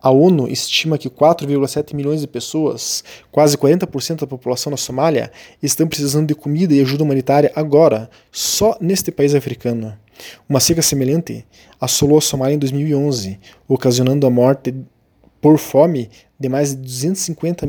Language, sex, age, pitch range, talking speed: Portuguese, male, 20-39, 125-155 Hz, 145 wpm